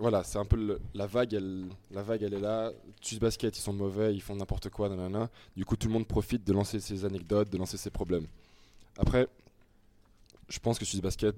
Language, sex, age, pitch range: French, male, 20-39, 90-105 Hz